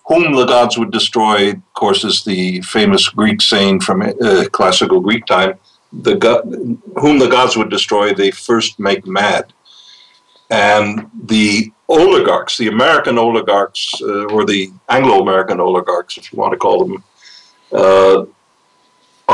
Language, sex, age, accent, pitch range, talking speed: English, male, 60-79, American, 105-125 Hz, 145 wpm